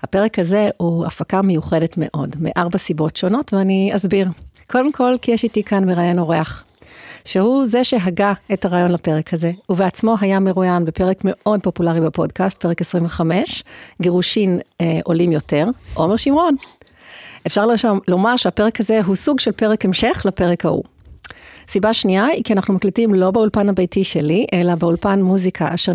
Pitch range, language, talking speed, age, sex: 175-215 Hz, Hebrew, 155 wpm, 40-59, female